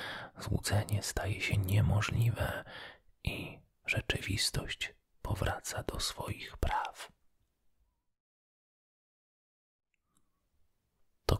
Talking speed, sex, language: 55 wpm, male, Polish